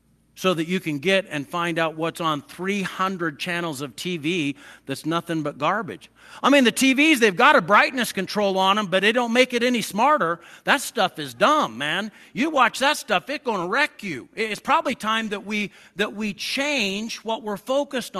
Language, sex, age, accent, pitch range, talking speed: English, male, 50-69, American, 150-215 Hz, 200 wpm